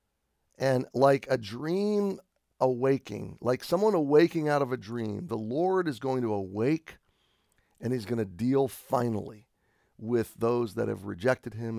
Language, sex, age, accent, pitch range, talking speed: English, male, 50-69, American, 110-145 Hz, 155 wpm